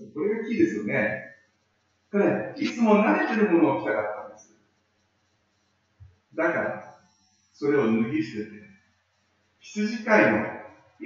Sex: male